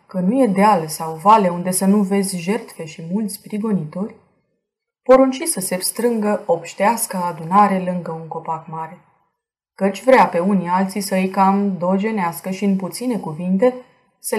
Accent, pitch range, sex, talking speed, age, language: native, 180-220 Hz, female, 155 wpm, 20-39, Romanian